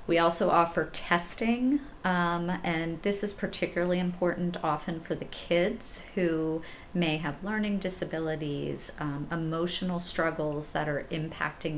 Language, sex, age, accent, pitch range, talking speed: English, female, 40-59, American, 145-180 Hz, 125 wpm